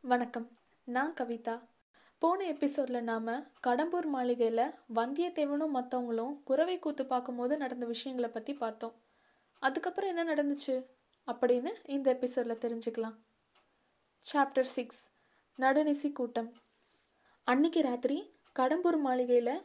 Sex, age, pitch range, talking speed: female, 20-39, 245-310 Hz, 100 wpm